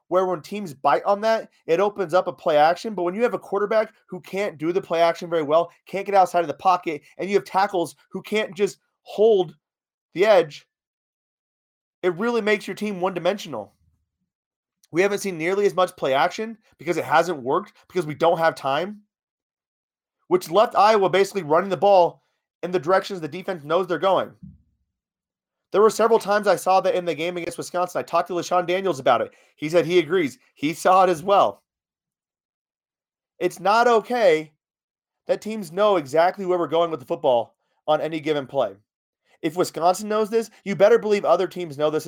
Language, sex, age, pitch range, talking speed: English, male, 30-49, 165-200 Hz, 195 wpm